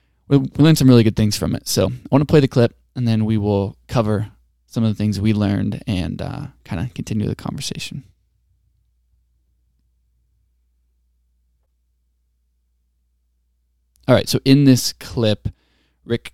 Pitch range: 70-120 Hz